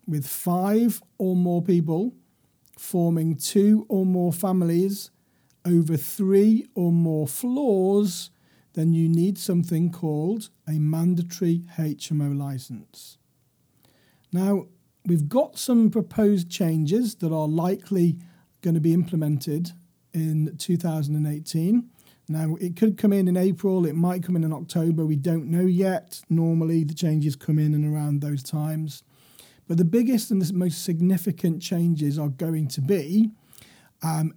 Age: 40-59